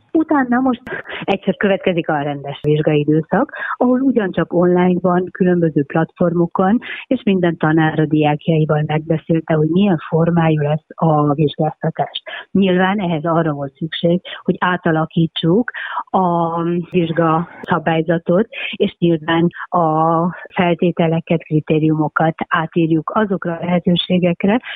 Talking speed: 105 wpm